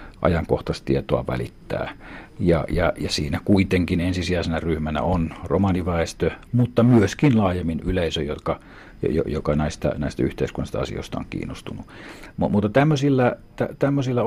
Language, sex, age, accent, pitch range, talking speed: Finnish, male, 60-79, native, 80-100 Hz, 120 wpm